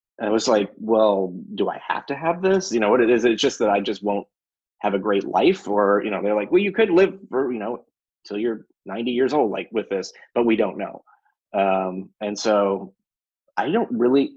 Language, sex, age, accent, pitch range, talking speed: English, male, 30-49, American, 105-140 Hz, 235 wpm